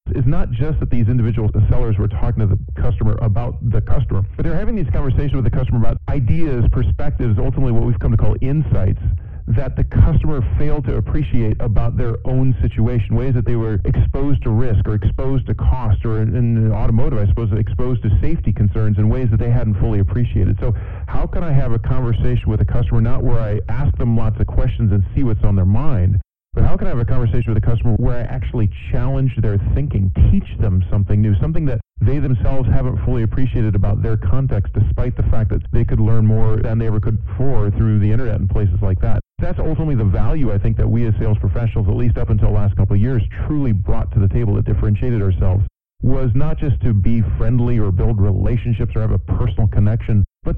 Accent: American